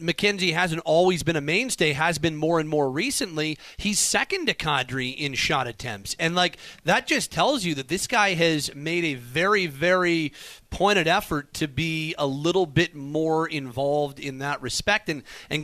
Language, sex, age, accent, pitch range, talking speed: English, male, 30-49, American, 135-155 Hz, 180 wpm